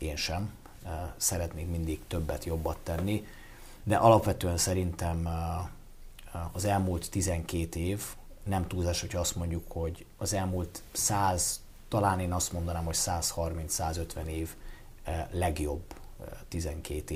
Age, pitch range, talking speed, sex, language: 30-49, 85-100 Hz, 110 wpm, male, Hungarian